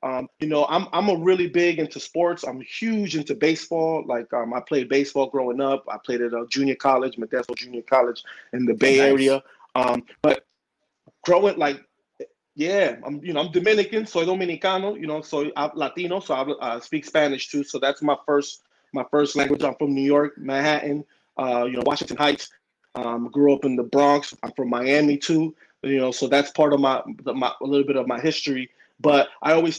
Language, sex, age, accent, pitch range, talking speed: English, male, 20-39, American, 135-175 Hz, 205 wpm